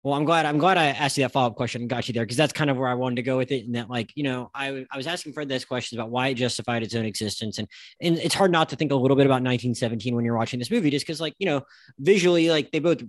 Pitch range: 125-155 Hz